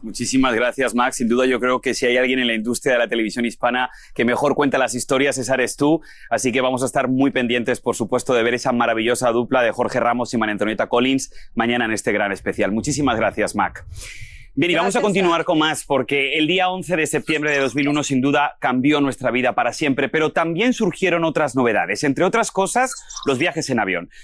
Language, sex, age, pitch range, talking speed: Spanish, male, 30-49, 130-185 Hz, 220 wpm